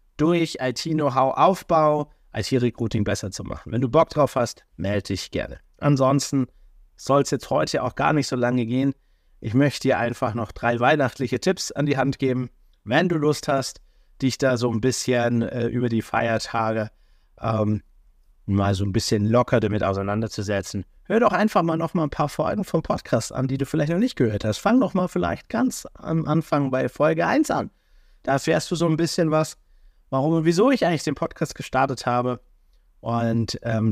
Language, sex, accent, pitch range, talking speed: German, male, German, 110-145 Hz, 190 wpm